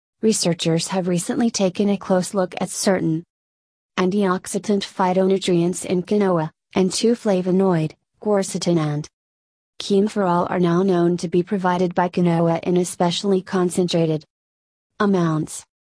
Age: 30-49